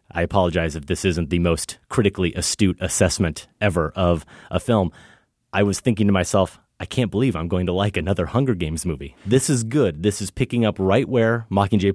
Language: English